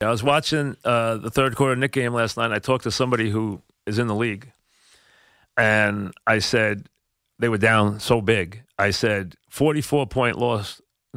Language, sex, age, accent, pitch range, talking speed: English, male, 40-59, American, 110-145 Hz, 175 wpm